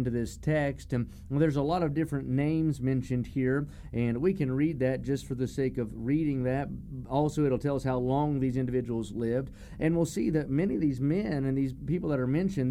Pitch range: 125-150 Hz